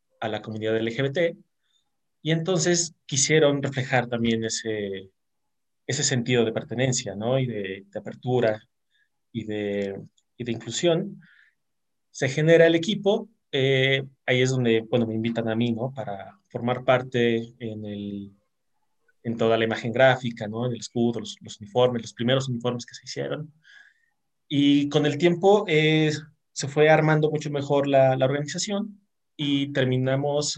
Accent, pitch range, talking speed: Mexican, 115-140 Hz, 150 wpm